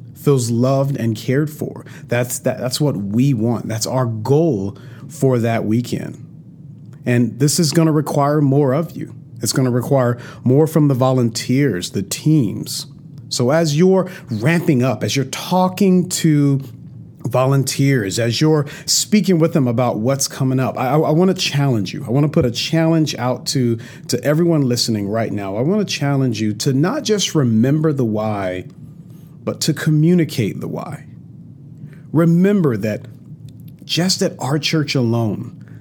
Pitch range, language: 125-155 Hz, English